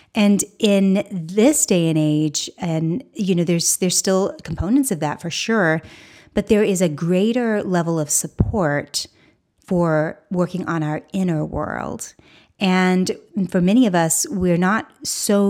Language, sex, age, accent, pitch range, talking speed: English, female, 30-49, American, 160-195 Hz, 150 wpm